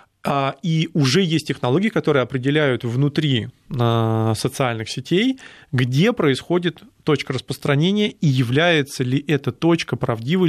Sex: male